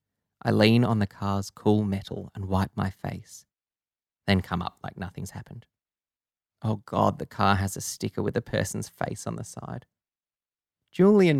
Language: English